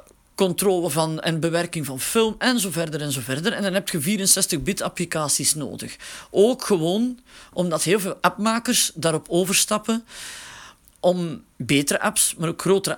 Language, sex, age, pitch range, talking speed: Dutch, male, 40-59, 165-220 Hz, 155 wpm